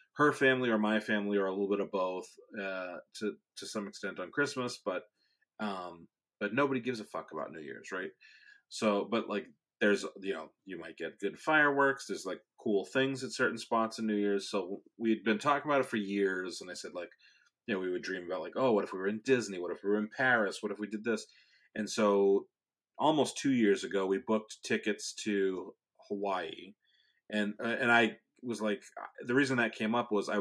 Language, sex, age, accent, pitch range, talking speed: English, male, 30-49, American, 100-115 Hz, 220 wpm